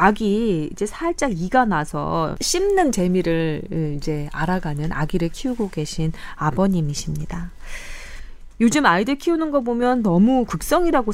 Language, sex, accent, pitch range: Korean, female, native, 170-245 Hz